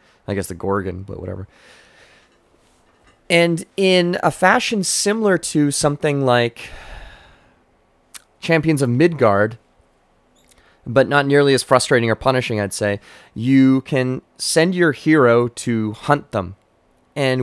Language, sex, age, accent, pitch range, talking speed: English, male, 30-49, American, 110-145 Hz, 120 wpm